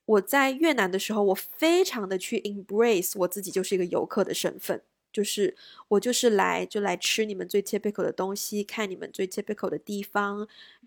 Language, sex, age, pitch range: Chinese, female, 20-39, 195-230 Hz